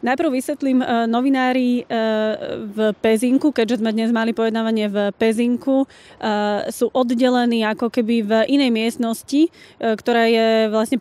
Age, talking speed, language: 20-39, 120 wpm, Slovak